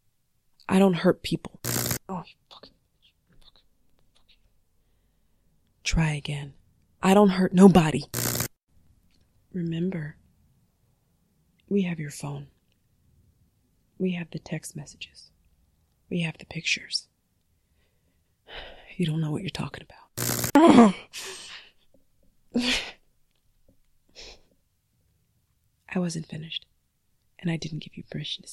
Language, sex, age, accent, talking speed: English, female, 30-49, American, 95 wpm